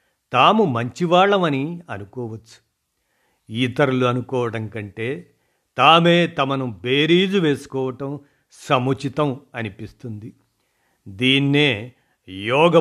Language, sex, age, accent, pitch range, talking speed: Telugu, male, 50-69, native, 115-145 Hz, 65 wpm